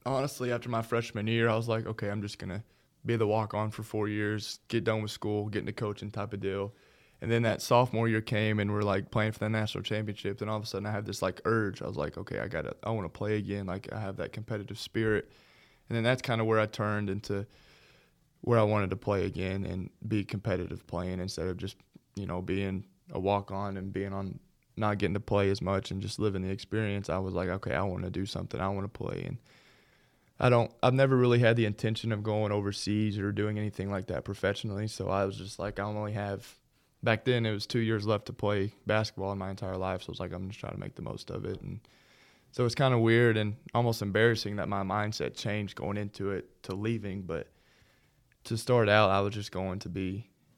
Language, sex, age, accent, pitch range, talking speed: English, male, 20-39, American, 95-115 Hz, 240 wpm